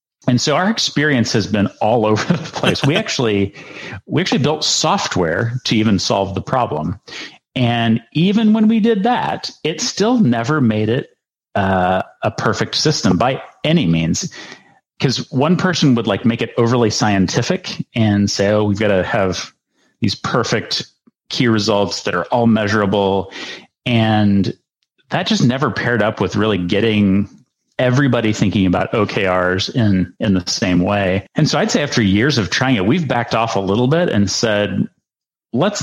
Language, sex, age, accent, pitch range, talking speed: English, male, 40-59, American, 100-125 Hz, 165 wpm